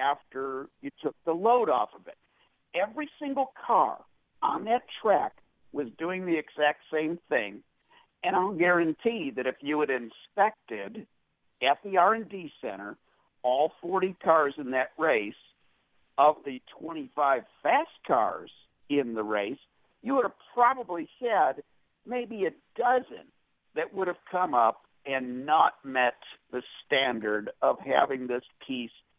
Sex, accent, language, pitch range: male, American, English, 125-180 Hz